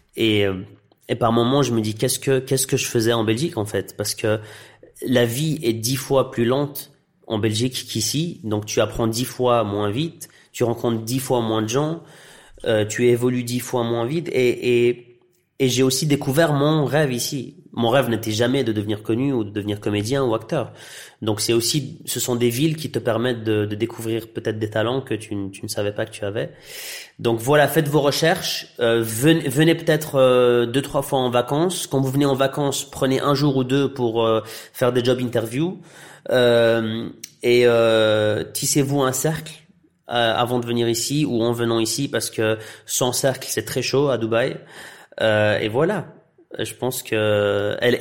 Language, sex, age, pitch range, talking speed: French, male, 30-49, 110-135 Hz, 200 wpm